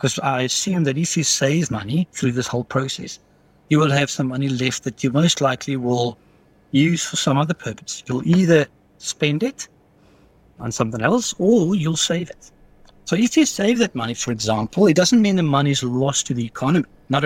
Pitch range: 130-175 Hz